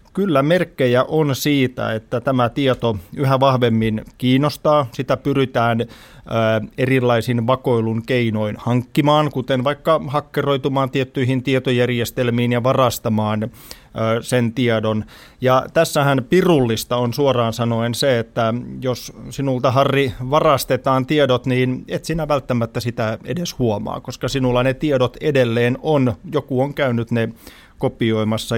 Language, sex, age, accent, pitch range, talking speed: Finnish, male, 30-49, native, 115-140 Hz, 115 wpm